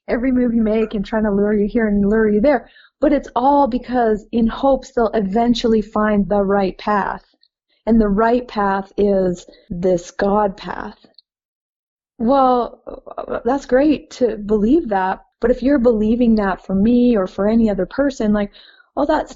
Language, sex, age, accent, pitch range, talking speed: English, female, 30-49, American, 200-240 Hz, 170 wpm